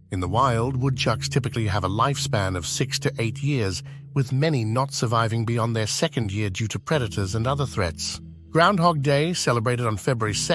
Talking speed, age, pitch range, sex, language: 180 wpm, 60-79, 120-155 Hz, male, English